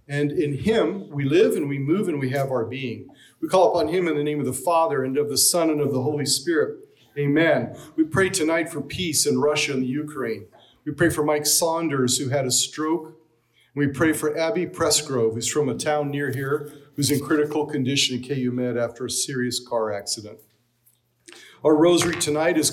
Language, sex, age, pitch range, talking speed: English, male, 40-59, 130-170 Hz, 210 wpm